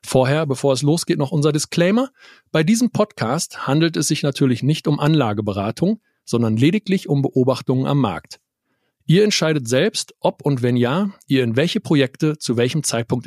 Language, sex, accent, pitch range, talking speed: German, male, German, 130-180 Hz, 165 wpm